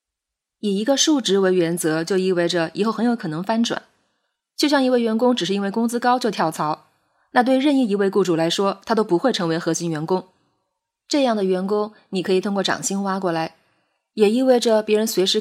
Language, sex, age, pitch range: Chinese, female, 20-39, 175-225 Hz